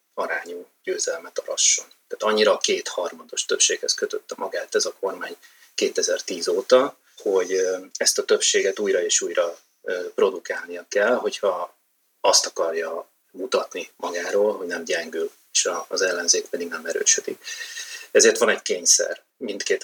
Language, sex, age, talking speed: Hungarian, male, 30-49, 130 wpm